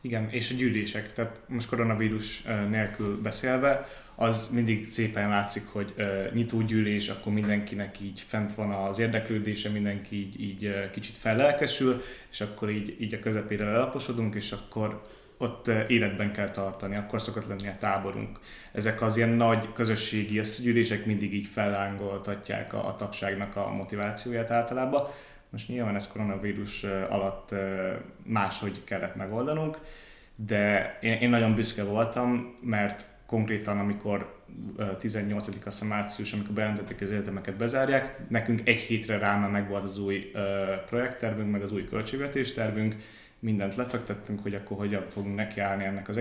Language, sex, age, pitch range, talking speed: Hungarian, male, 20-39, 100-115 Hz, 140 wpm